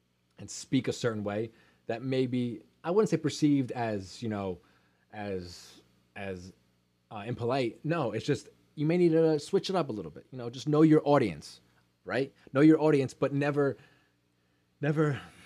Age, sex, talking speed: 20-39, male, 175 wpm